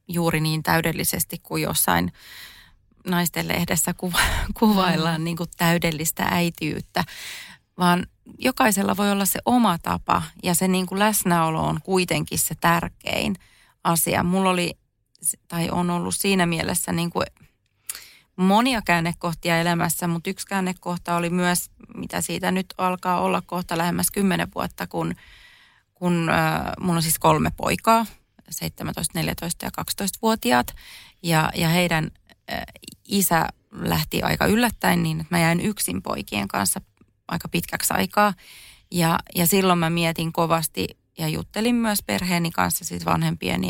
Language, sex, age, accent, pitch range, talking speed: Finnish, female, 30-49, native, 165-185 Hz, 120 wpm